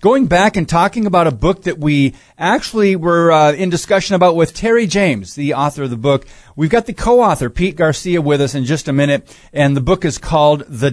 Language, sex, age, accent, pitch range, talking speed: English, male, 40-59, American, 120-160 Hz, 225 wpm